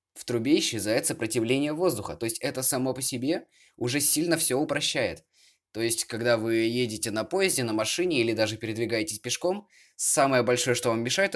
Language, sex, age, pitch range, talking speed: Russian, male, 20-39, 105-135 Hz, 175 wpm